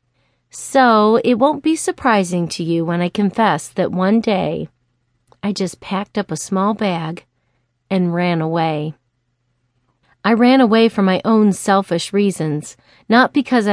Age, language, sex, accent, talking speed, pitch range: 40-59, English, female, American, 145 wpm, 165-235 Hz